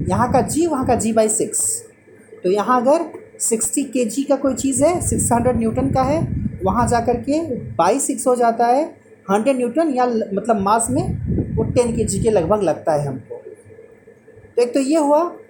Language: Hindi